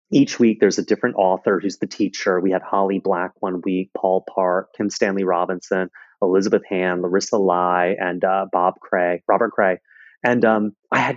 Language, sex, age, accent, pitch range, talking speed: English, male, 30-49, American, 95-115 Hz, 185 wpm